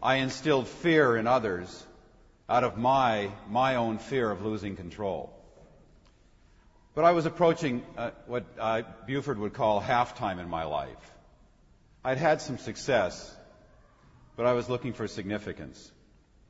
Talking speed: 140 wpm